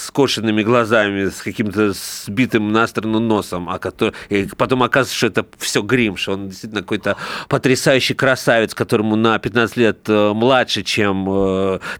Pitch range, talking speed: 110-145 Hz, 155 wpm